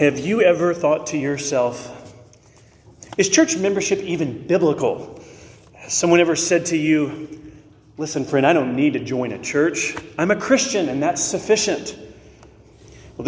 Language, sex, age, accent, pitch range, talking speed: English, male, 40-59, American, 140-190 Hz, 150 wpm